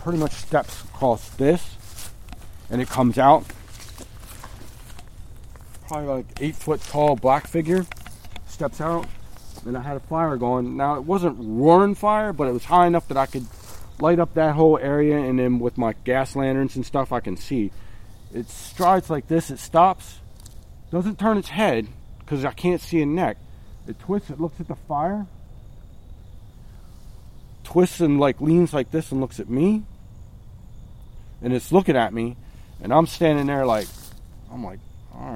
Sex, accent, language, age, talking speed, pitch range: male, American, English, 40-59, 170 wpm, 105-140 Hz